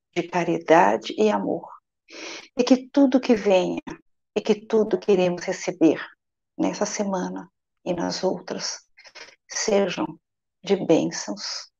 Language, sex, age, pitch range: Portuguese, female, 50-69, 180-220 Hz